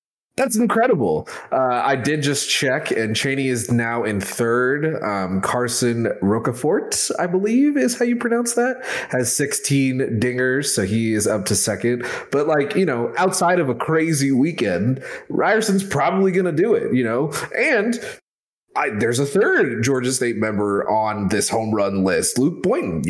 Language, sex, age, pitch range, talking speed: English, male, 20-39, 105-145 Hz, 165 wpm